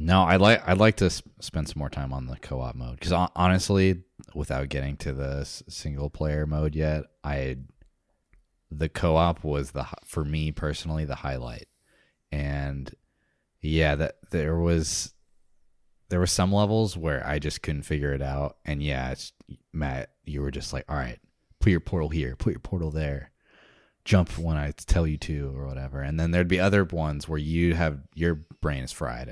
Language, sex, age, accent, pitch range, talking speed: English, male, 20-39, American, 70-85 Hz, 190 wpm